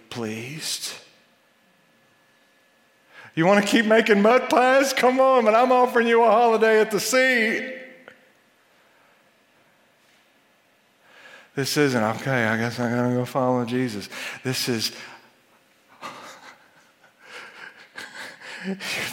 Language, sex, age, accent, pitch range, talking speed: English, male, 50-69, American, 115-145 Hz, 100 wpm